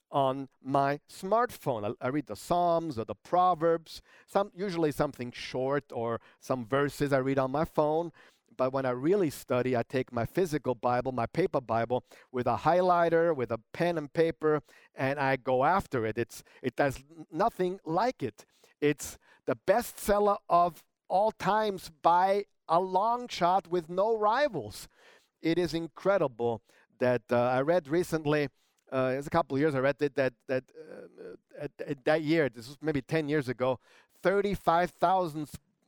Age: 50-69